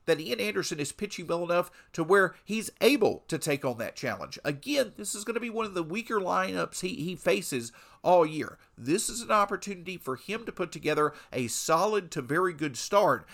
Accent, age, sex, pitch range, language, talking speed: American, 50-69, male, 135-195 Hz, English, 210 wpm